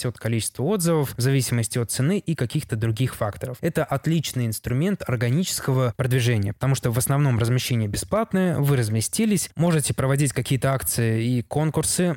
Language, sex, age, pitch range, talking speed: Russian, male, 20-39, 120-145 Hz, 150 wpm